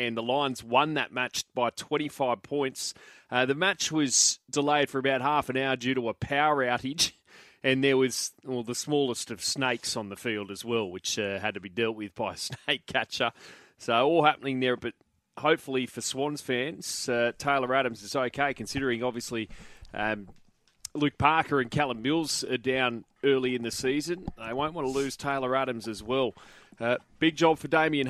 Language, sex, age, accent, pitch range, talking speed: English, male, 30-49, Australian, 120-145 Hz, 190 wpm